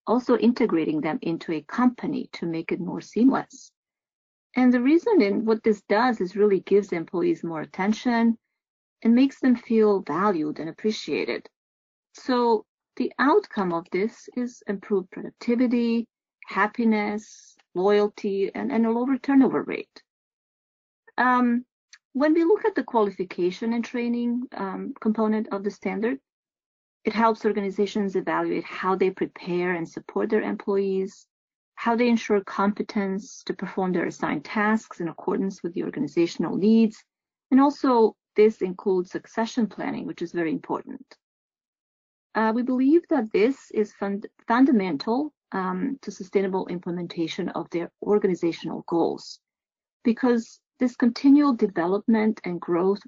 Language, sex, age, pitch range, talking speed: English, female, 40-59, 190-245 Hz, 135 wpm